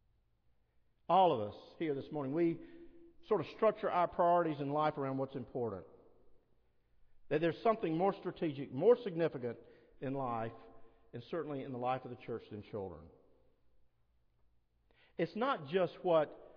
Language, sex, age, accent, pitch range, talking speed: English, male, 50-69, American, 120-180 Hz, 145 wpm